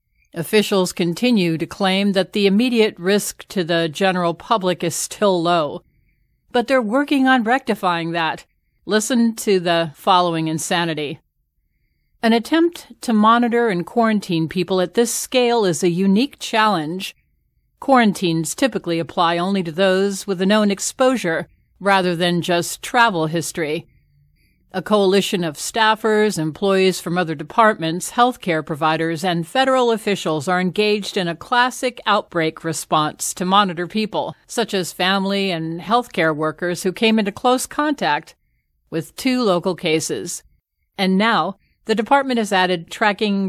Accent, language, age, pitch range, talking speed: American, English, 50-69, 170-220 Hz, 140 wpm